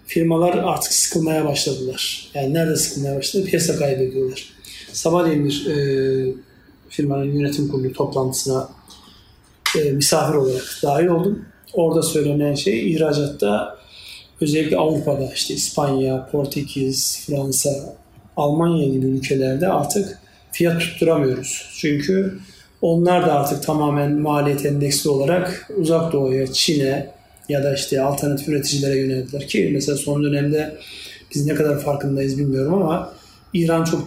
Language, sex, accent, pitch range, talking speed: Turkish, male, native, 140-165 Hz, 120 wpm